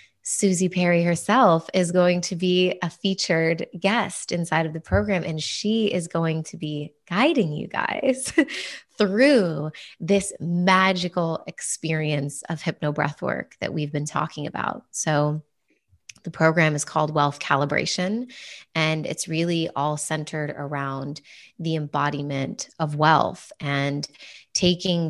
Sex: female